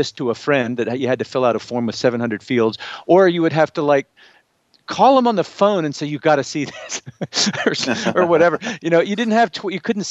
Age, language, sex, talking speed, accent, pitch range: 50-69, English, male, 255 wpm, American, 125-165 Hz